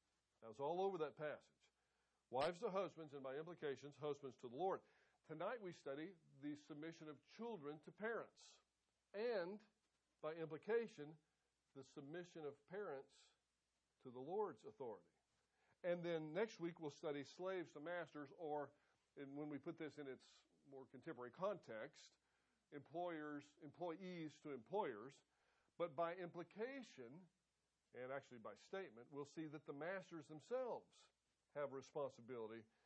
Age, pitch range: 50-69, 140-180 Hz